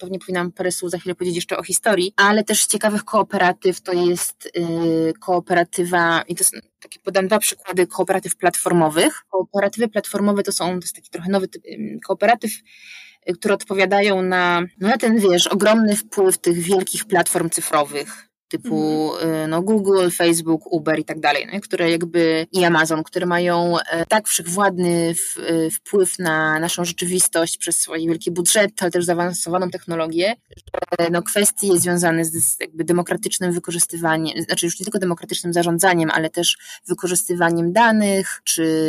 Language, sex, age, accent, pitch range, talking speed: Polish, female, 20-39, native, 170-195 Hz, 155 wpm